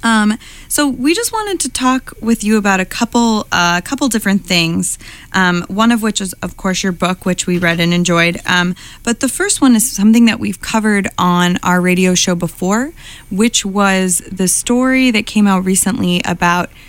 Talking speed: 195 wpm